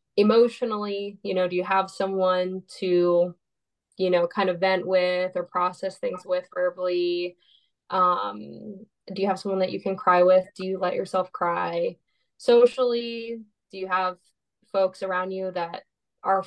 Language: English